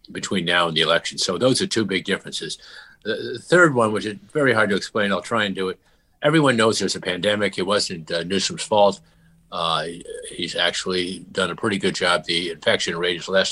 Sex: male